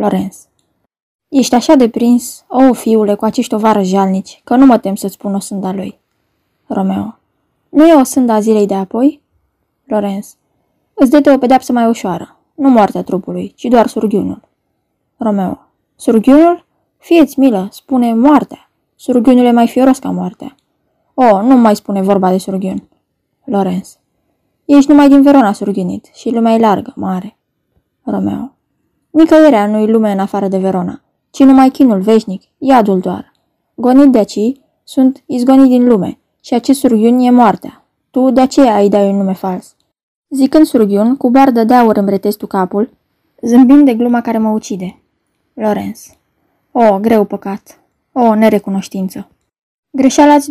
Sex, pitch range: female, 205-260 Hz